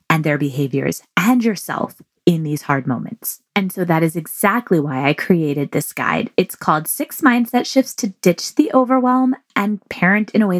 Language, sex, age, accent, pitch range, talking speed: English, female, 20-39, American, 160-215 Hz, 185 wpm